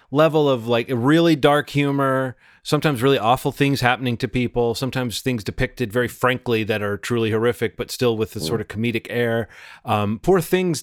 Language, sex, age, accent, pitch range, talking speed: English, male, 30-49, American, 115-140 Hz, 185 wpm